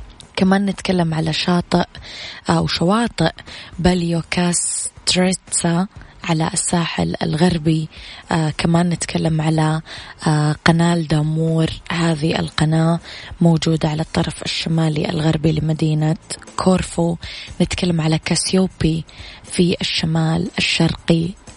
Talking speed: 85 wpm